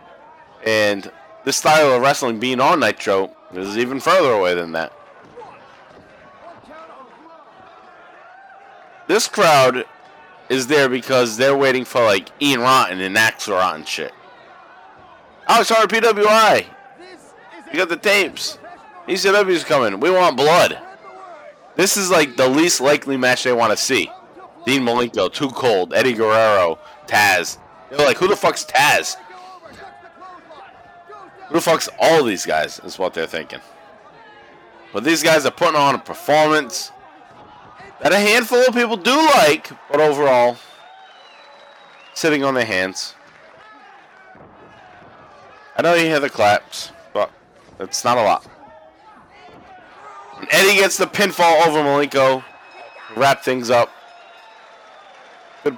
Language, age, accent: English, 30-49, American